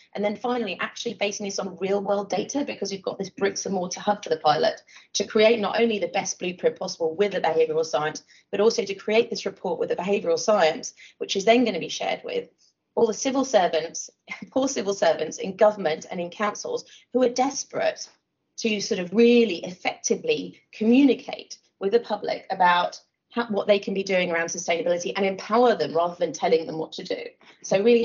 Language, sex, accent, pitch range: English, female, British, 180-235 Hz